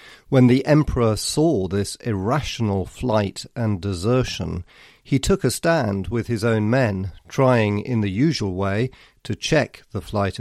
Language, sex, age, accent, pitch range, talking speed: English, male, 50-69, British, 100-130 Hz, 150 wpm